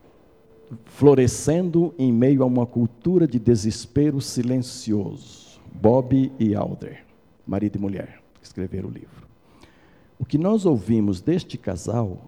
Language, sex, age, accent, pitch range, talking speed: Portuguese, male, 60-79, Brazilian, 105-135 Hz, 115 wpm